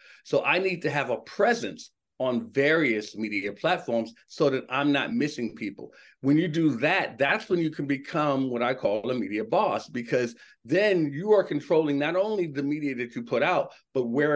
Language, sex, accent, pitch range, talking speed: English, male, American, 135-170 Hz, 195 wpm